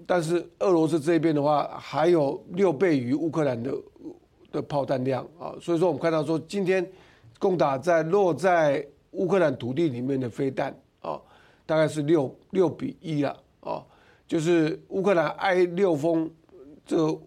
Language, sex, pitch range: Chinese, male, 140-175 Hz